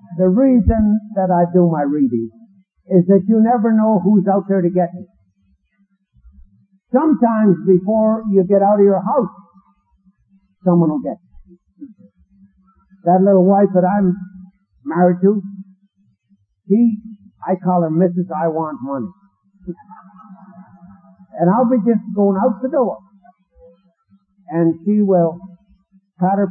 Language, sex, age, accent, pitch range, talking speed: English, male, 60-79, American, 175-200 Hz, 130 wpm